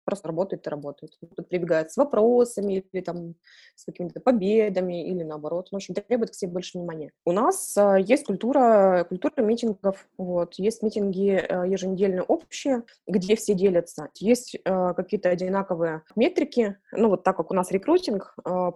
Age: 20-39